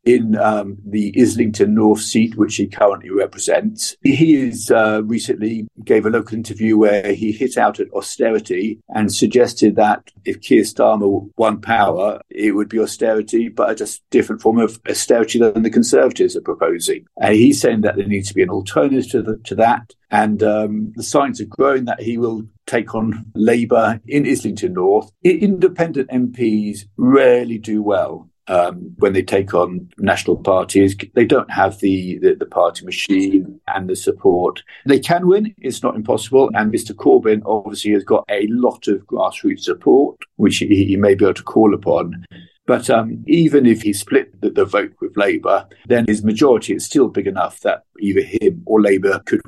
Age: 50-69